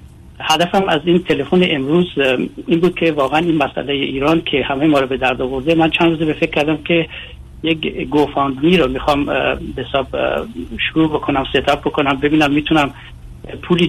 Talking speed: 175 wpm